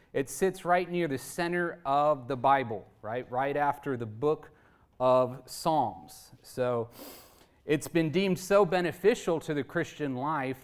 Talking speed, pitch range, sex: 145 wpm, 125-155 Hz, male